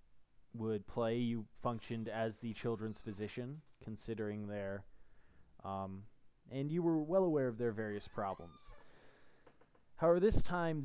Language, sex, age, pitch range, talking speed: English, male, 20-39, 105-130 Hz, 125 wpm